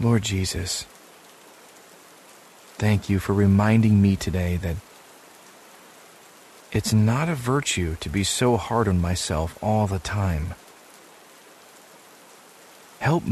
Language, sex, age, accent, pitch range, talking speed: English, male, 40-59, American, 95-115 Hz, 105 wpm